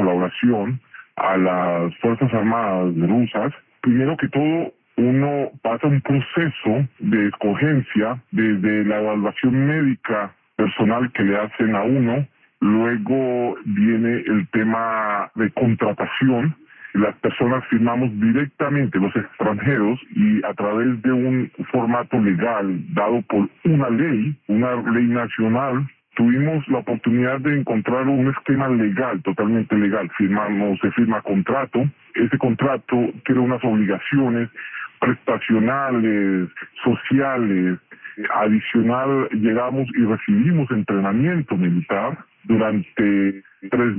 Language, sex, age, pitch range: Spanish, female, 20-39, 105-130 Hz